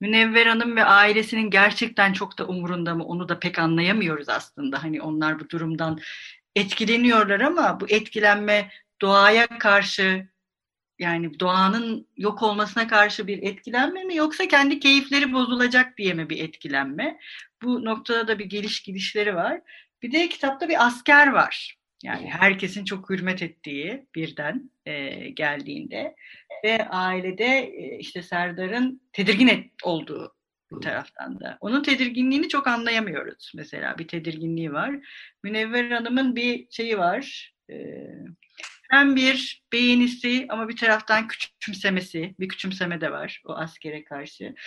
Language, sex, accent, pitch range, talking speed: Turkish, female, native, 185-250 Hz, 125 wpm